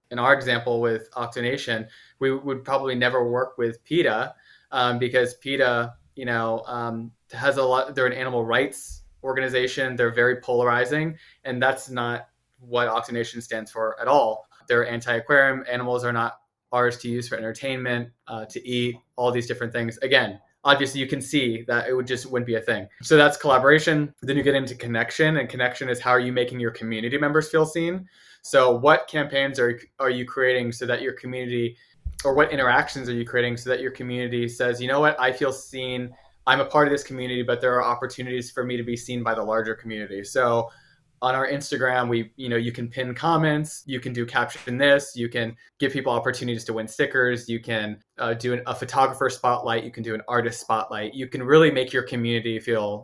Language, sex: English, male